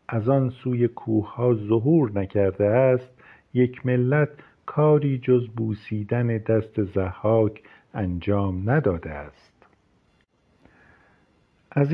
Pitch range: 105-125 Hz